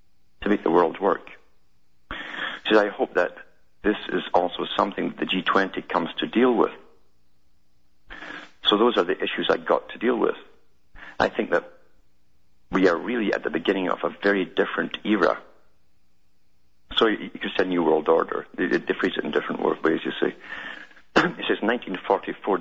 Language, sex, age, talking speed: English, male, 50-69, 165 wpm